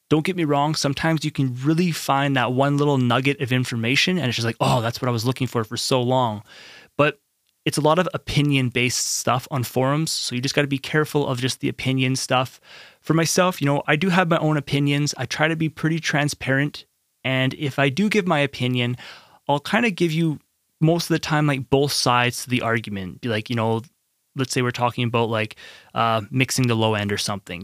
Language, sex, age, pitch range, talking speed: English, male, 20-39, 125-155 Hz, 230 wpm